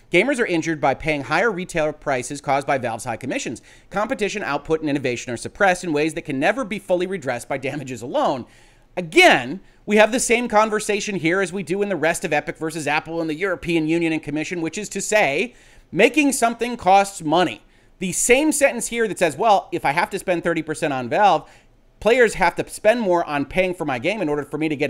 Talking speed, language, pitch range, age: 220 wpm, English, 155-225 Hz, 30-49